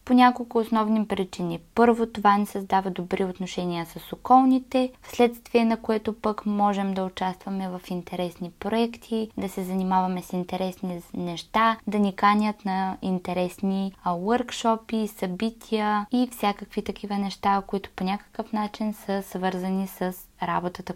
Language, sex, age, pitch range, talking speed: Bulgarian, female, 20-39, 195-240 Hz, 135 wpm